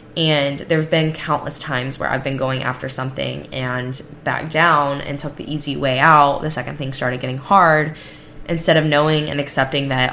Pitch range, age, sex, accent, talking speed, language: 130-150 Hz, 10-29, female, American, 190 wpm, English